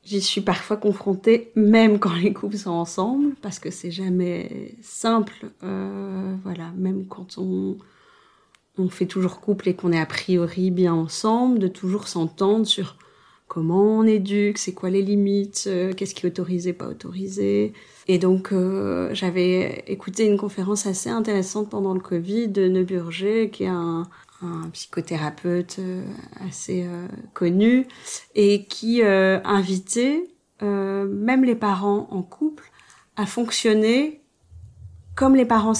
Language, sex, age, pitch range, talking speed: French, female, 30-49, 180-215 Hz, 145 wpm